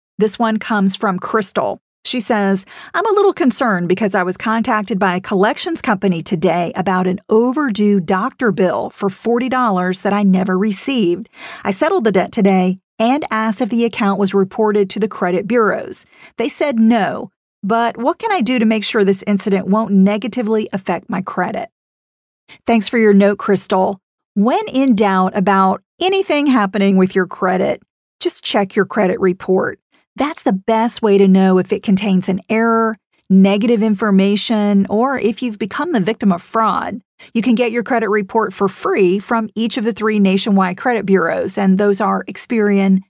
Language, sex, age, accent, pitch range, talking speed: English, female, 40-59, American, 195-235 Hz, 175 wpm